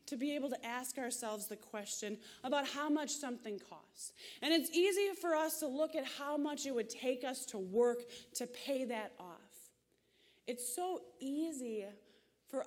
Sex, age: female, 20-39